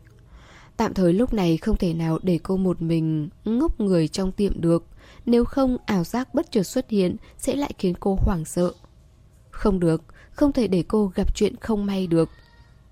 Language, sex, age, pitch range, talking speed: Vietnamese, female, 10-29, 170-215 Hz, 190 wpm